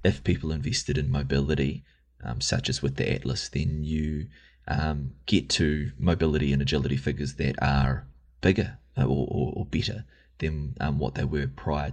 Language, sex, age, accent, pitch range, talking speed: English, male, 20-39, Australian, 65-85 Hz, 165 wpm